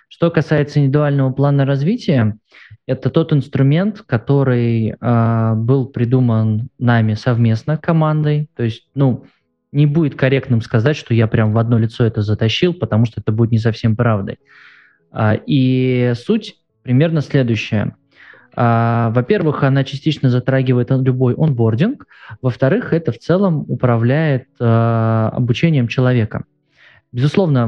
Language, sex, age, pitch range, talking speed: Russian, male, 20-39, 115-150 Hz, 120 wpm